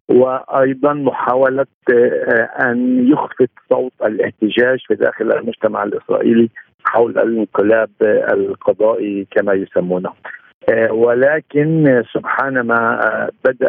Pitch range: 110-165 Hz